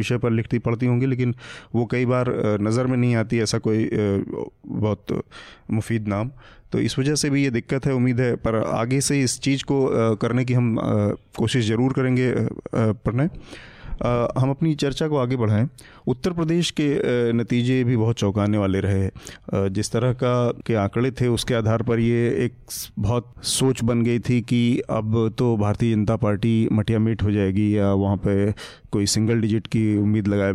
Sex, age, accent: male, 30-49, native